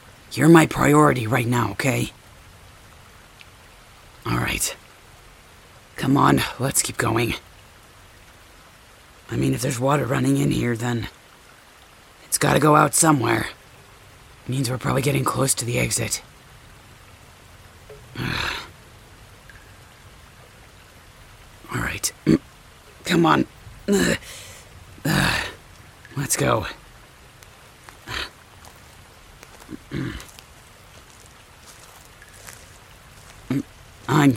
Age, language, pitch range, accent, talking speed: 40-59, English, 105-140 Hz, American, 70 wpm